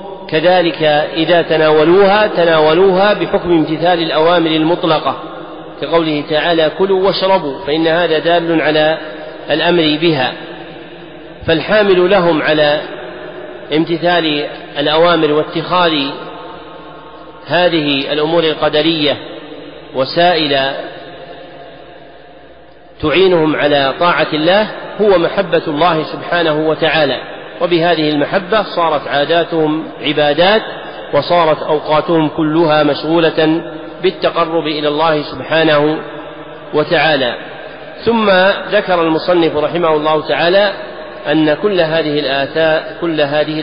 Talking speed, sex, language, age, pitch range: 85 wpm, male, Arabic, 40-59, 155-175 Hz